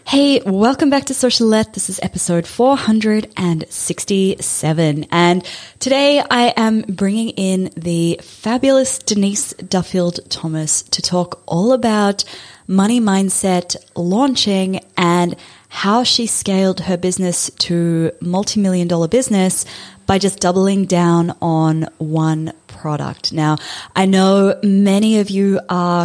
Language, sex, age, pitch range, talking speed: English, female, 20-39, 170-210 Hz, 120 wpm